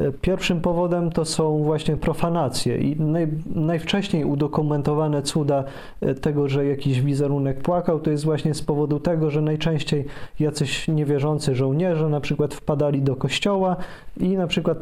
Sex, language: male, Polish